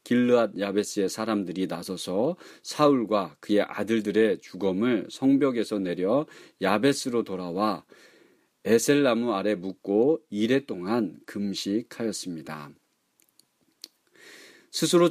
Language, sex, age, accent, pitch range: Korean, male, 40-59, native, 100-140 Hz